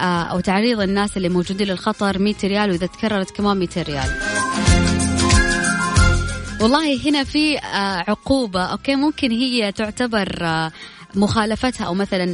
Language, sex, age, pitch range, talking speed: Arabic, female, 20-39, 175-220 Hz, 115 wpm